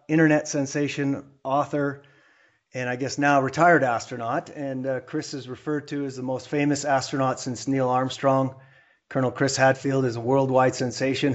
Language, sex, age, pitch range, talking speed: English, male, 30-49, 120-140 Hz, 160 wpm